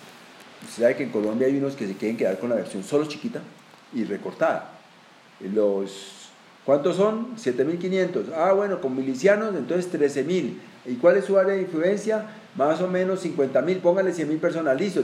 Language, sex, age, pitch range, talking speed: Spanish, male, 40-59, 120-185 Hz, 170 wpm